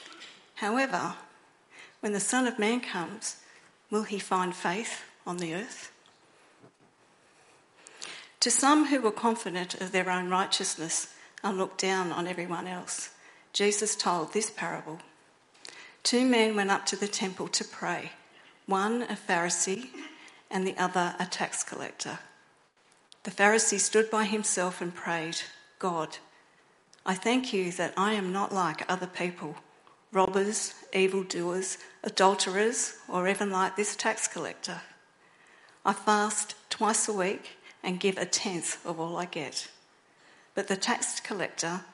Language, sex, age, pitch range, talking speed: English, female, 50-69, 180-215 Hz, 135 wpm